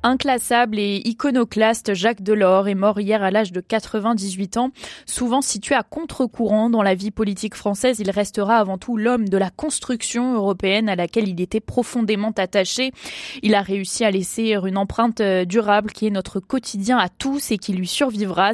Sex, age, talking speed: female, 20-39, 180 wpm